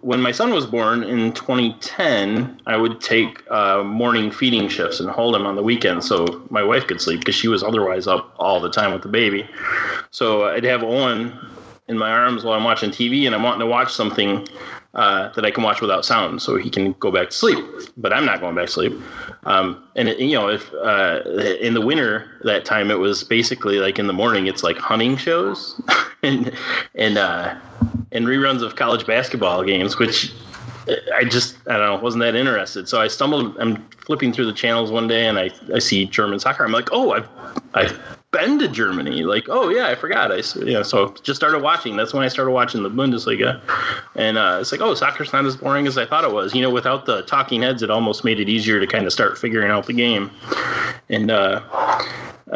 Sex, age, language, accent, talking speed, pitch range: male, 20-39, English, American, 220 wpm, 105-125 Hz